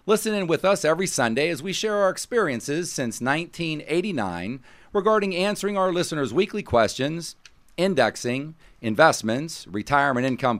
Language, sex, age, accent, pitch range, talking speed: English, male, 40-59, American, 130-180 Hz, 130 wpm